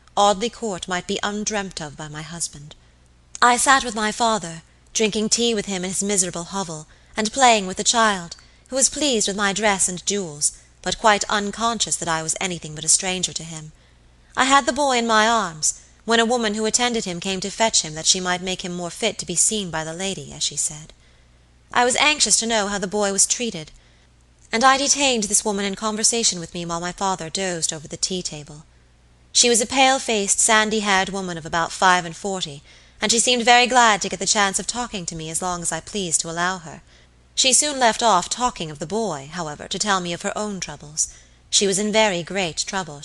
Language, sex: Japanese, female